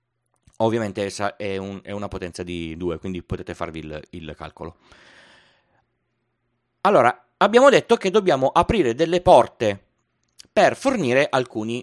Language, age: Italian, 30-49